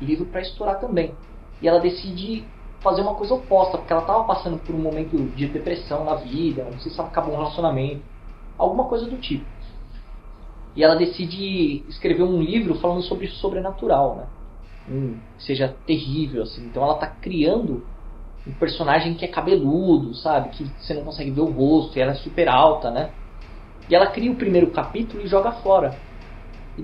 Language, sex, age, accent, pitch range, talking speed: Portuguese, male, 20-39, Brazilian, 130-180 Hz, 180 wpm